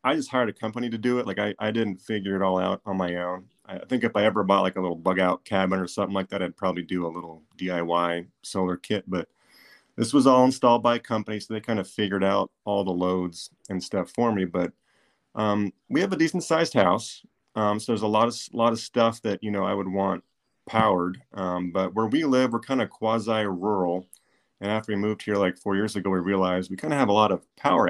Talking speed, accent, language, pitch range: 255 wpm, American, English, 90-110 Hz